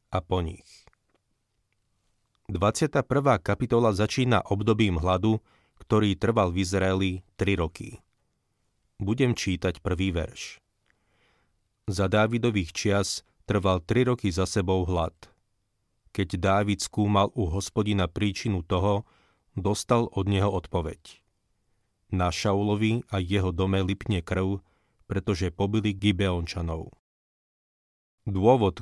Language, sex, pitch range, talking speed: Slovak, male, 95-105 Hz, 100 wpm